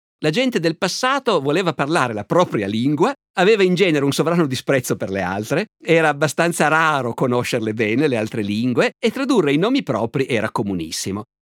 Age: 50-69